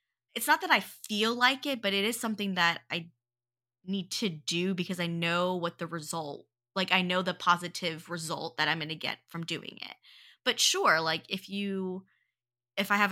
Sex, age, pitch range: female, 20-39, 165-205 Hz